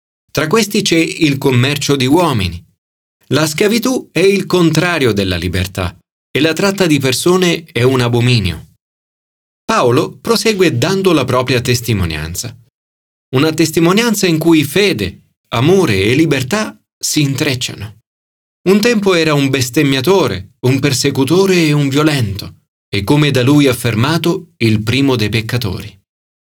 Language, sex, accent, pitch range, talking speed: Italian, male, native, 110-165 Hz, 130 wpm